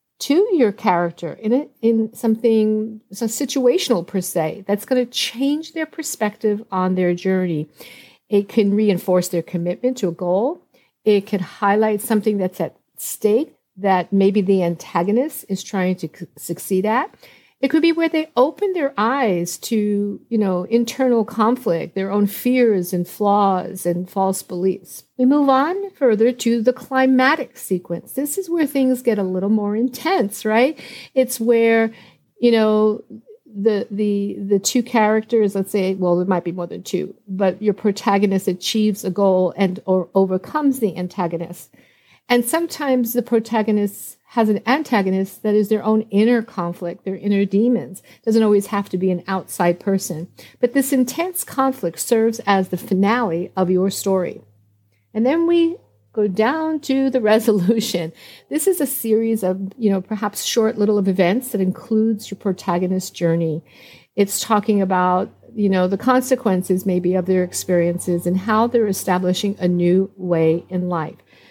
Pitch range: 185-240 Hz